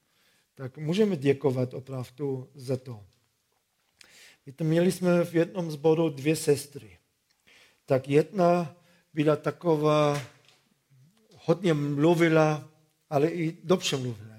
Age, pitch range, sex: 50-69, 145-170 Hz, male